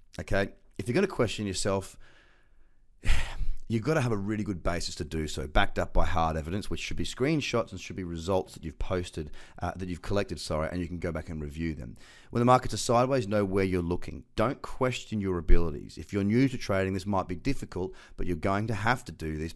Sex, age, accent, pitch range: male, 30-49, Australian, 85-120 Hz